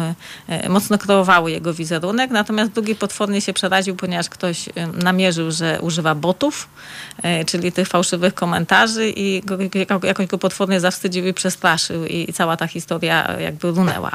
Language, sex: Polish, female